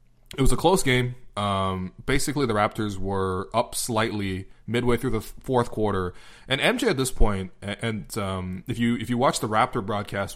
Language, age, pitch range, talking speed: English, 20-39, 100-125 Hz, 190 wpm